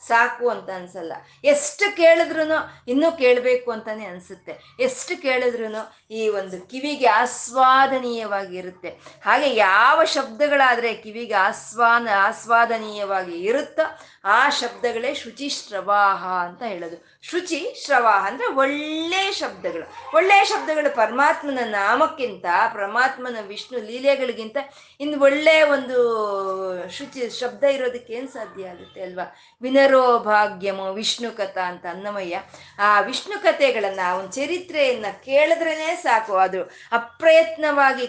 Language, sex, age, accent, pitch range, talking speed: Kannada, female, 20-39, native, 200-285 Hz, 95 wpm